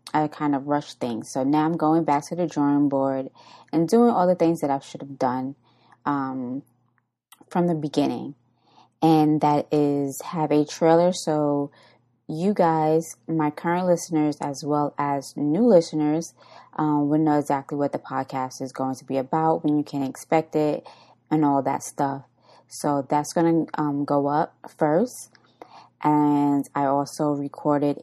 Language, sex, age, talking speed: English, female, 20-39, 165 wpm